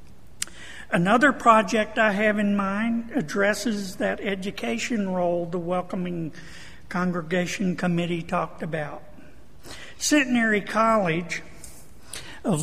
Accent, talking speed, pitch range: American, 90 wpm, 170-215 Hz